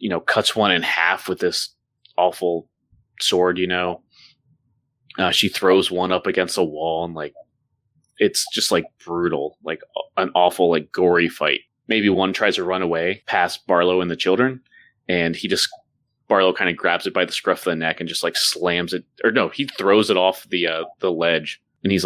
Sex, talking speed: male, 205 wpm